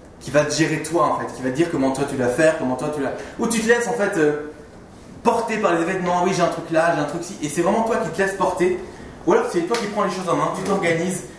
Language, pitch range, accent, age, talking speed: French, 150-185 Hz, French, 20-39, 325 wpm